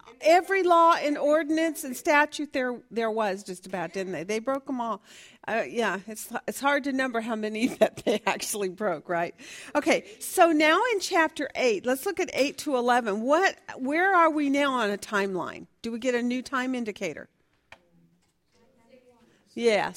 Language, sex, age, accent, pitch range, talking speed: English, female, 50-69, American, 205-280 Hz, 175 wpm